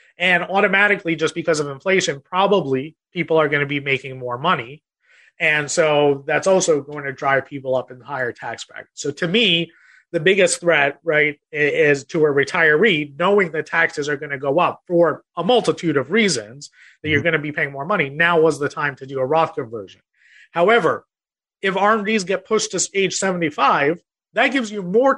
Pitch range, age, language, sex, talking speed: 150-190 Hz, 30-49, English, male, 195 wpm